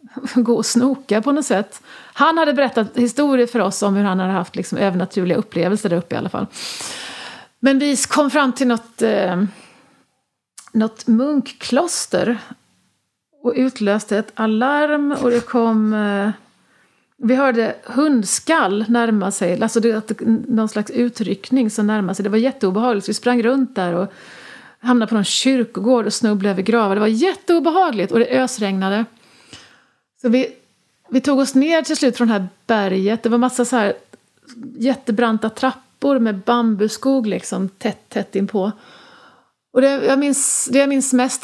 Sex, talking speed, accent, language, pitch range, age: female, 155 wpm, Swedish, English, 205-255 Hz, 40-59